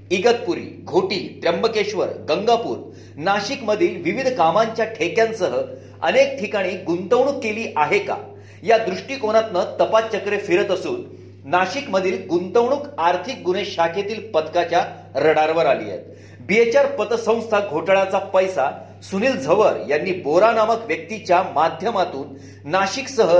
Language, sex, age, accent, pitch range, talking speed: Marathi, male, 40-59, native, 175-235 Hz, 45 wpm